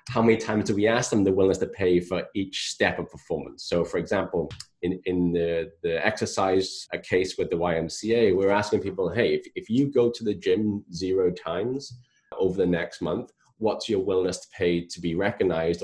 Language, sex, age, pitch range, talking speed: English, male, 20-39, 95-125 Hz, 205 wpm